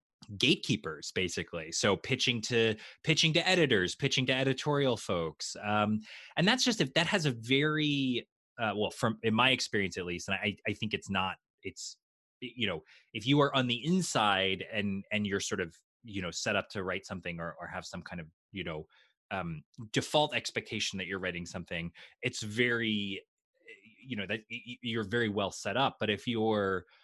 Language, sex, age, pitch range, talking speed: English, male, 20-39, 95-135 Hz, 185 wpm